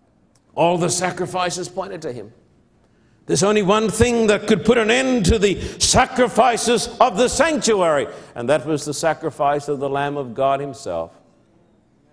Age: 60-79